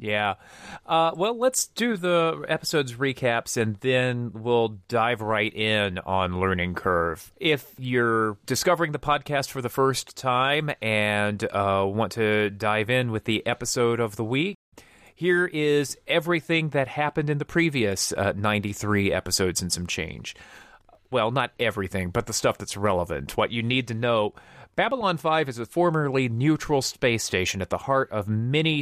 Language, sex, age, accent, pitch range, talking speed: English, male, 30-49, American, 105-145 Hz, 160 wpm